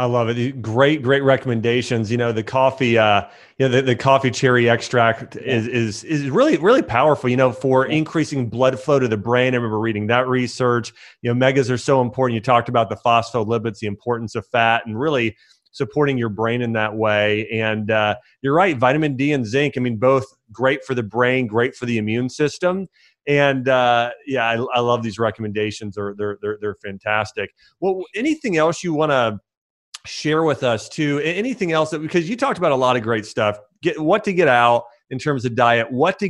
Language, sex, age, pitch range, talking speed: English, male, 30-49, 115-140 Hz, 210 wpm